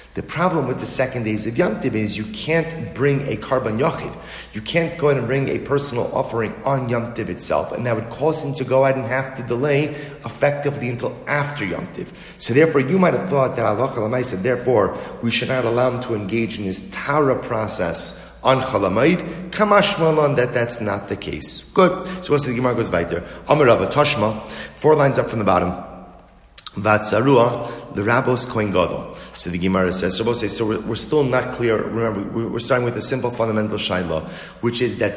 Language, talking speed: English, 200 wpm